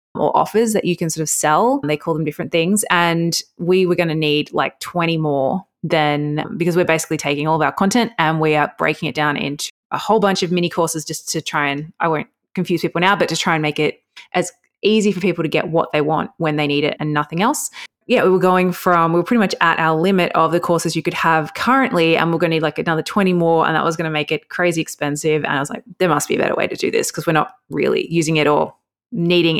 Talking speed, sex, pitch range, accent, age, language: 270 wpm, female, 155-190 Hz, Australian, 20-39, English